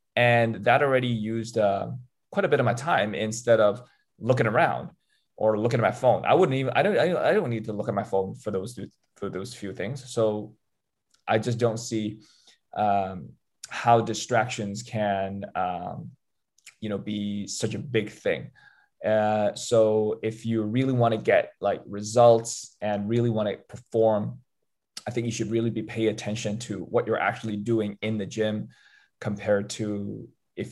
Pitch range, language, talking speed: 105-115 Hz, English, 170 wpm